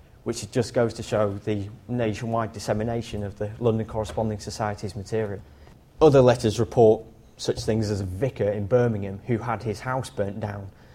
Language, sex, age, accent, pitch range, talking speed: English, male, 30-49, British, 110-135 Hz, 165 wpm